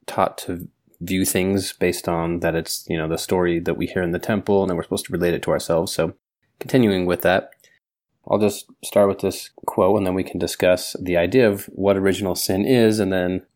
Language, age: English, 20-39